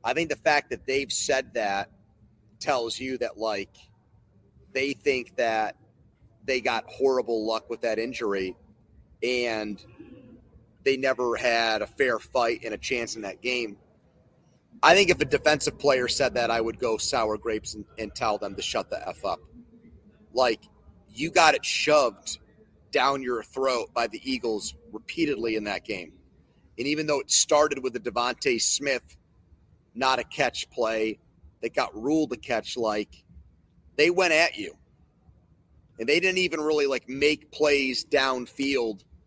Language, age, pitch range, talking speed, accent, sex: English, 30-49, 110-135 Hz, 160 wpm, American, male